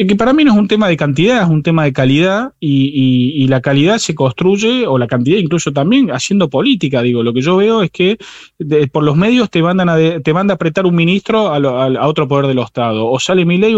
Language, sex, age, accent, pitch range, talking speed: Spanish, male, 20-39, Argentinian, 135-190 Hz, 260 wpm